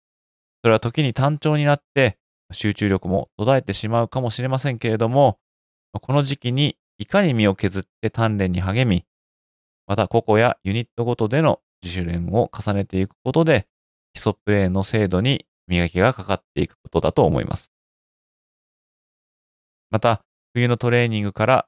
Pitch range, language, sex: 95-130 Hz, Japanese, male